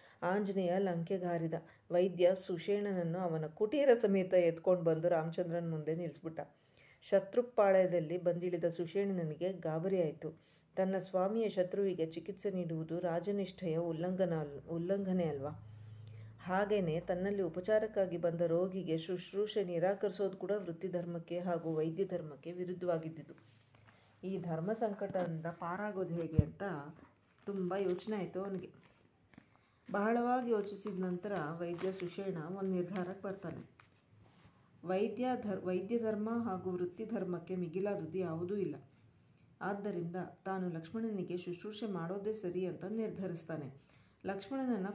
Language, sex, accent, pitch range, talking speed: Kannada, female, native, 170-200 Hz, 95 wpm